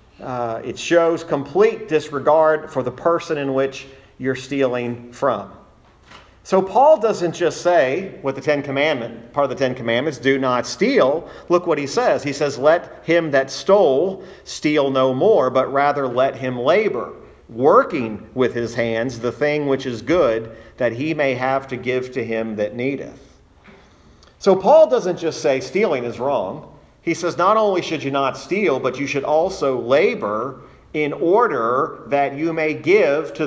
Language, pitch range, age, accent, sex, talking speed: English, 125-160 Hz, 40-59, American, male, 170 wpm